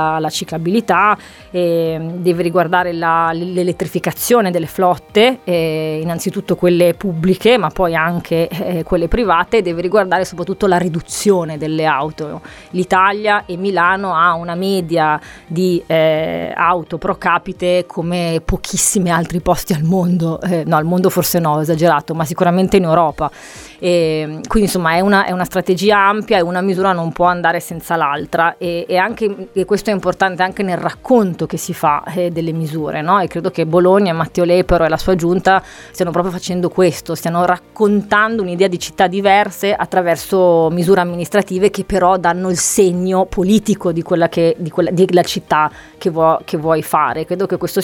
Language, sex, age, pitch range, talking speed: Italian, female, 20-39, 165-190 Hz, 170 wpm